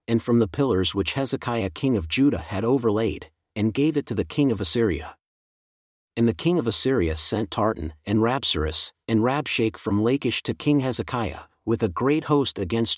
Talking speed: 185 wpm